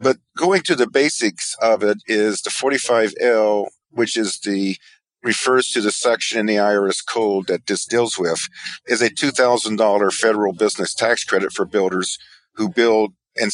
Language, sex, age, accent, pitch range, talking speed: English, male, 50-69, American, 105-120 Hz, 165 wpm